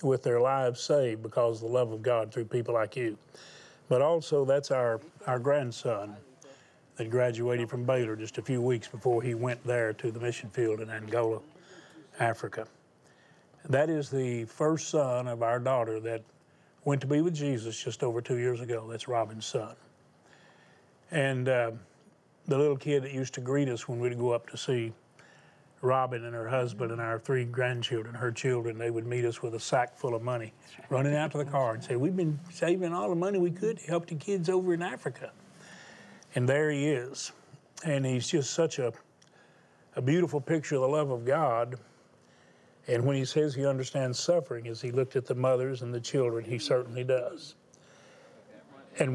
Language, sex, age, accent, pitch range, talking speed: English, male, 40-59, American, 120-145 Hz, 190 wpm